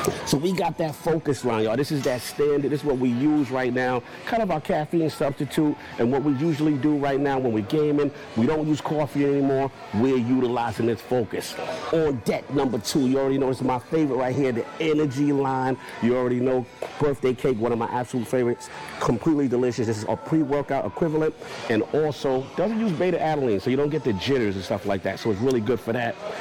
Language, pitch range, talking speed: English, 120-145 Hz, 220 wpm